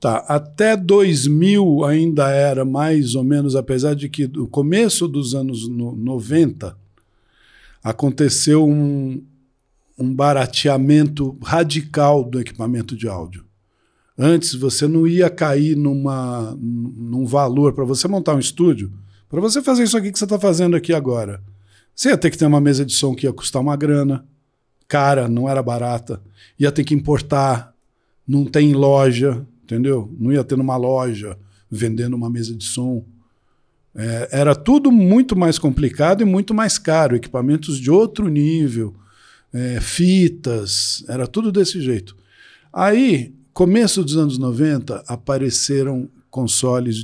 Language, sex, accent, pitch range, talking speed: Portuguese, male, Brazilian, 120-160 Hz, 145 wpm